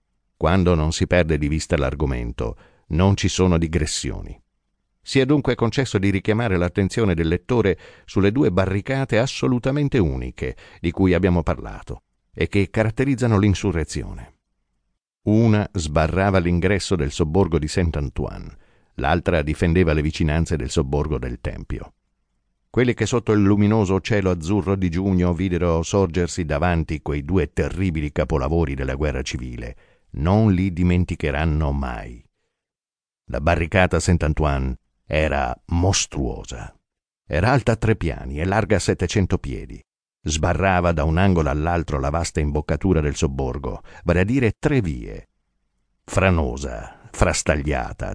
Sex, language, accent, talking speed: male, Italian, native, 130 wpm